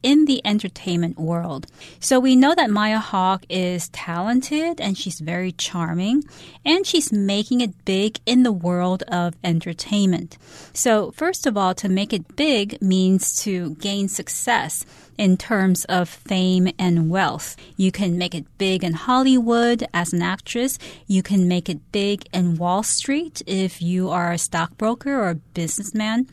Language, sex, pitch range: Chinese, female, 175-225 Hz